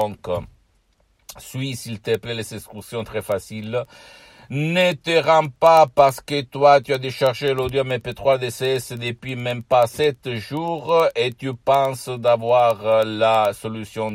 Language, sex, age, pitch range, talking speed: Italian, male, 60-79, 105-130 Hz, 150 wpm